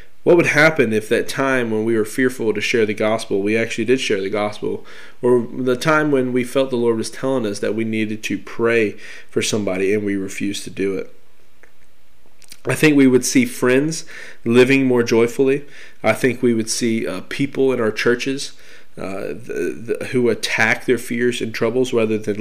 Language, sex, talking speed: English, male, 195 wpm